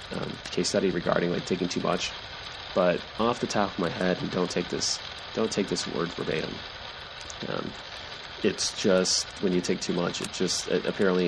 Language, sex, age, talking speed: English, male, 30-49, 190 wpm